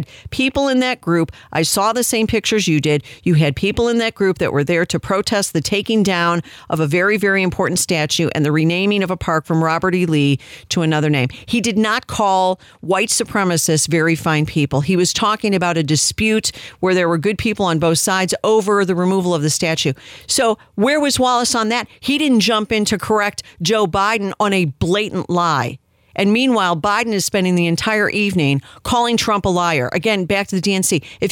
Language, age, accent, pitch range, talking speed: English, 50-69, American, 165-225 Hz, 210 wpm